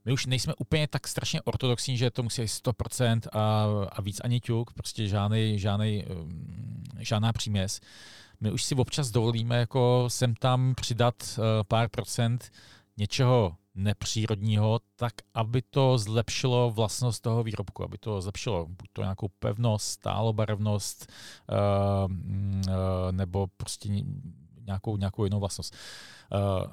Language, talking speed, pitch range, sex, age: Czech, 125 wpm, 100-120 Hz, male, 40-59